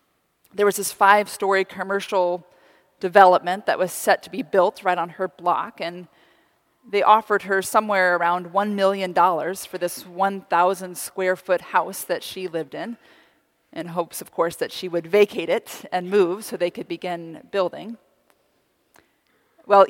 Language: English